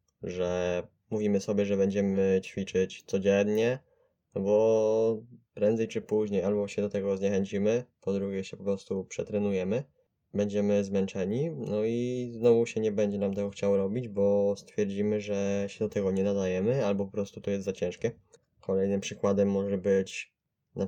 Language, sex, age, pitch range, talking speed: Polish, male, 20-39, 100-110 Hz, 160 wpm